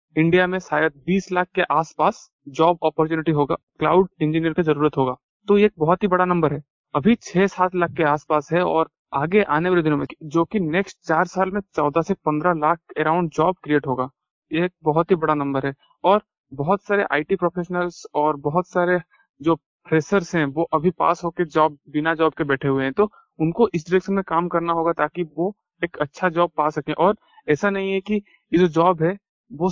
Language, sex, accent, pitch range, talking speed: Hindi, male, native, 150-185 Hz, 210 wpm